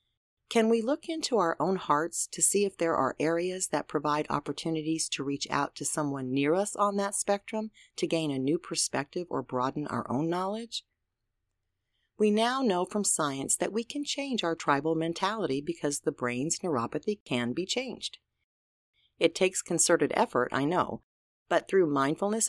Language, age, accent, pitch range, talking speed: English, 40-59, American, 140-205 Hz, 170 wpm